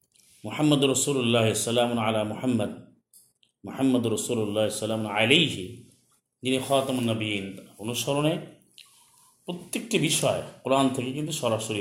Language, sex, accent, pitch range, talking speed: Bengali, male, native, 110-140 Hz, 115 wpm